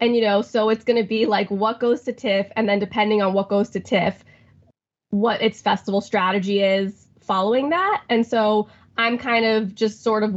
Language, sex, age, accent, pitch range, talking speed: English, female, 20-39, American, 195-220 Hz, 210 wpm